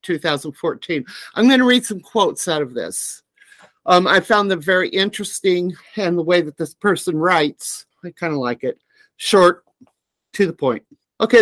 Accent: American